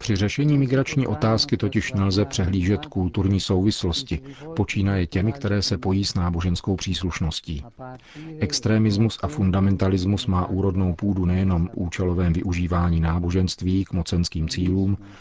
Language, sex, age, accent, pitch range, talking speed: Czech, male, 40-59, native, 90-110 Hz, 120 wpm